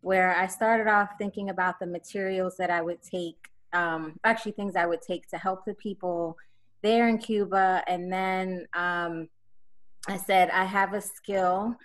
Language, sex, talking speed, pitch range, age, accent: English, female, 170 wpm, 165-190 Hz, 20-39, American